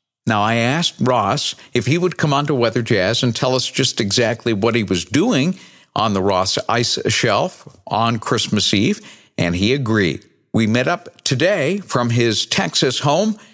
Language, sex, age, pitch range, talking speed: English, male, 60-79, 110-145 Hz, 175 wpm